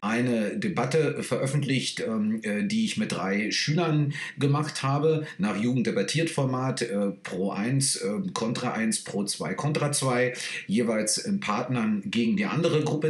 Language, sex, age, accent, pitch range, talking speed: German, male, 40-59, German, 115-195 Hz, 135 wpm